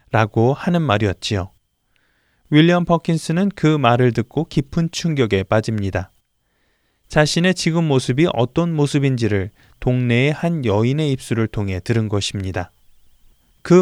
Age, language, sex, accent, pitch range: 20-39, Korean, male, native, 110-155 Hz